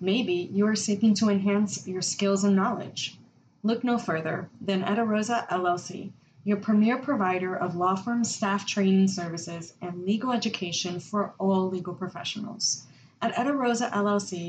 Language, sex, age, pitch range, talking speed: English, female, 20-39, 185-225 Hz, 145 wpm